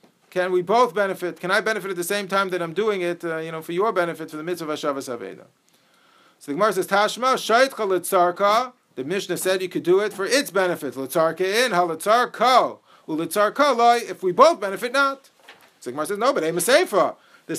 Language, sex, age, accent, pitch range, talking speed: English, male, 50-69, American, 180-235 Hz, 200 wpm